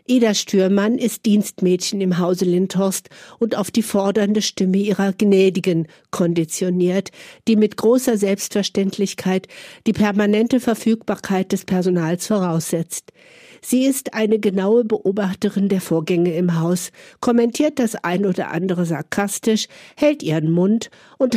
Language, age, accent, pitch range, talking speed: German, 60-79, German, 180-210 Hz, 125 wpm